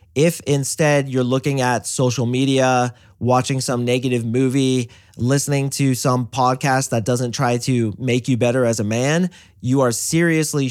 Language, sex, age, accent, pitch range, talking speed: English, male, 30-49, American, 120-140 Hz, 155 wpm